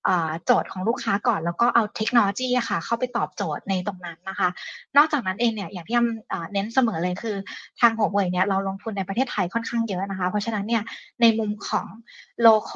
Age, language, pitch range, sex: 20-39, Thai, 195-235 Hz, female